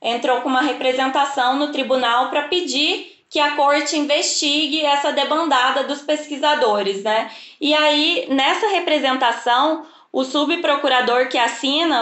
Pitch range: 245-300 Hz